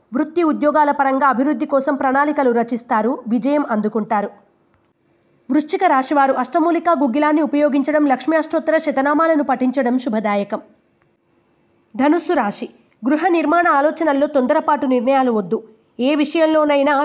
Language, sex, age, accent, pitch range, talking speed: Telugu, female, 20-39, native, 250-310 Hz, 100 wpm